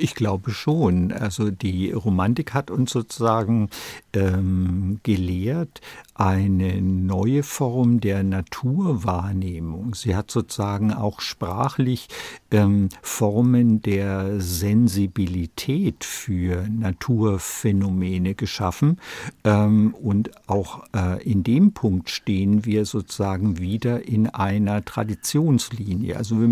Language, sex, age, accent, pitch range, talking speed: German, male, 60-79, German, 100-120 Hz, 100 wpm